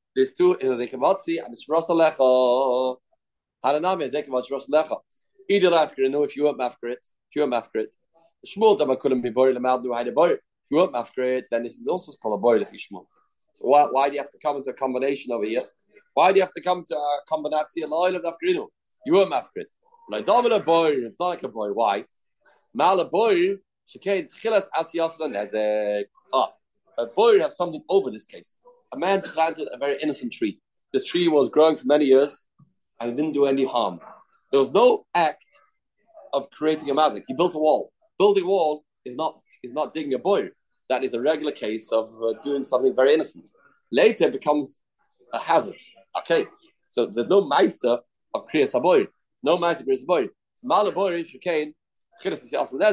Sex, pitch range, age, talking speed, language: male, 130-200 Hz, 30-49, 185 wpm, English